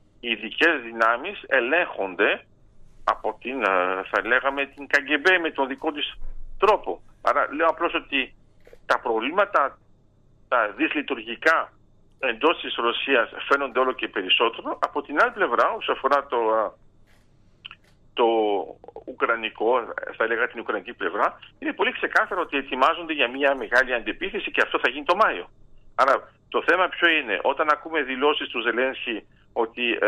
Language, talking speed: Greek, 140 wpm